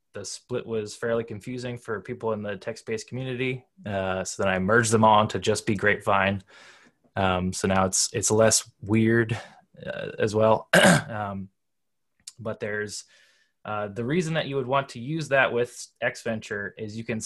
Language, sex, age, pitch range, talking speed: English, male, 20-39, 105-125 Hz, 175 wpm